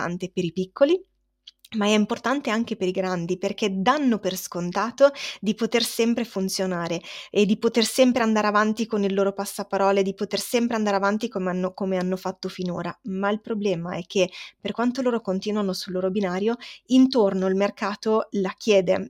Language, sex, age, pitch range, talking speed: Italian, female, 20-39, 185-215 Hz, 175 wpm